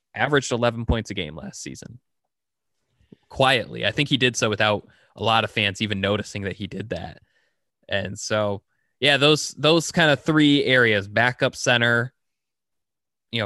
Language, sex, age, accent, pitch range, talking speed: English, male, 20-39, American, 100-125 Hz, 160 wpm